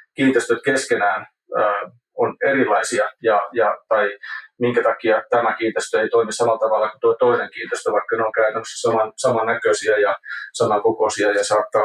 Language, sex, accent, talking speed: Finnish, male, native, 155 wpm